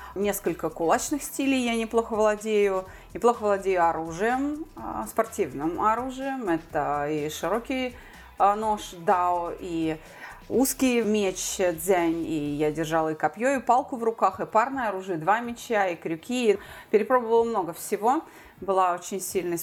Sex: female